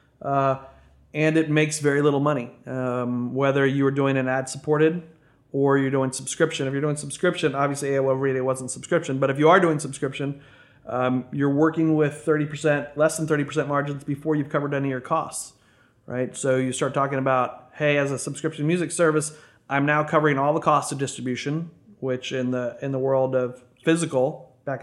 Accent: American